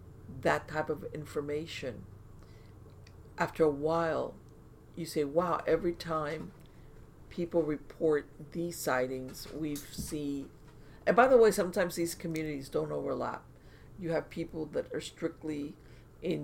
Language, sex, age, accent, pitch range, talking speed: English, female, 50-69, American, 145-170 Hz, 125 wpm